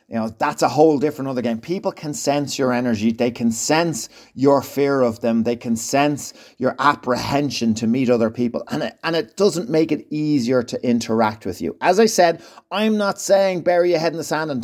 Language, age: English, 30-49